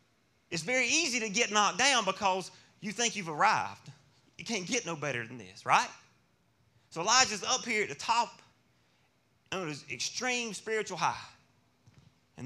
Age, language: 30-49, English